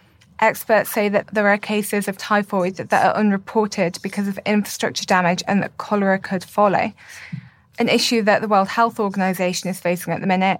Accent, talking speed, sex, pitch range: British, 180 wpm, female, 185-210 Hz